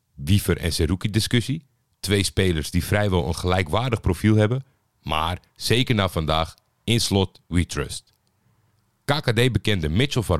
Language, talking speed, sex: Dutch, 135 wpm, male